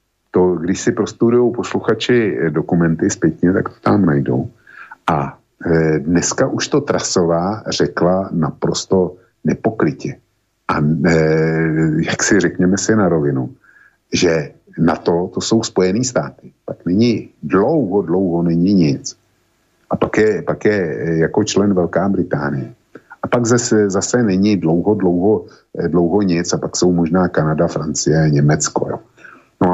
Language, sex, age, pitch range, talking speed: Slovak, male, 50-69, 80-100 Hz, 135 wpm